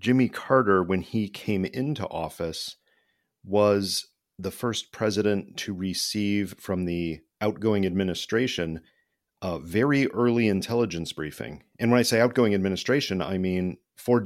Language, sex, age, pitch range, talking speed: English, male, 40-59, 90-105 Hz, 130 wpm